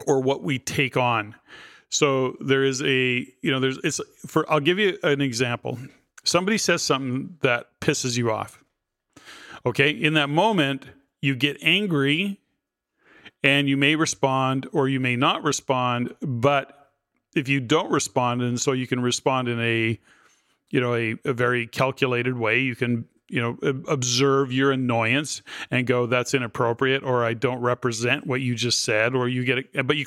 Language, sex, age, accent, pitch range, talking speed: English, male, 40-59, American, 125-150 Hz, 170 wpm